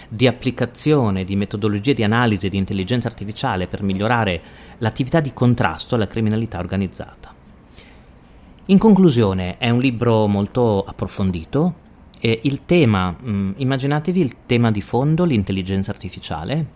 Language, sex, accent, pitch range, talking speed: Italian, male, native, 95-130 Hz, 125 wpm